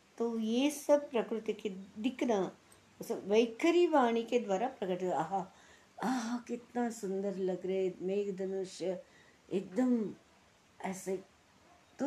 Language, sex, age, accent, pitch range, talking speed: Hindi, female, 60-79, native, 165-240 Hz, 115 wpm